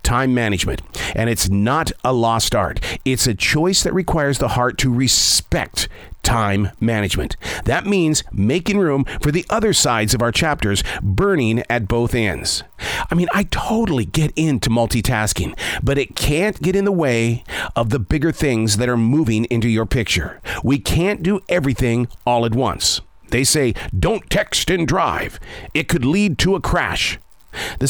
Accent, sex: American, male